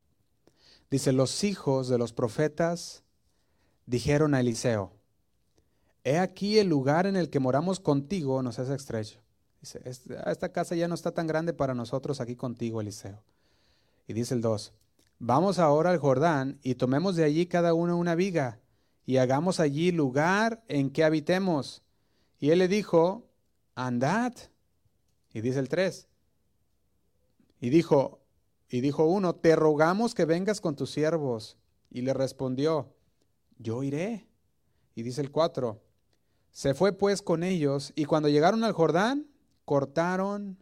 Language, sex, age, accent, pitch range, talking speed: Spanish, male, 30-49, Mexican, 115-165 Hz, 145 wpm